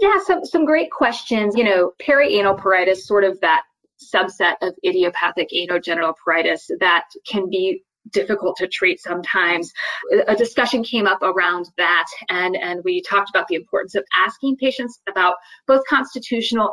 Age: 20-39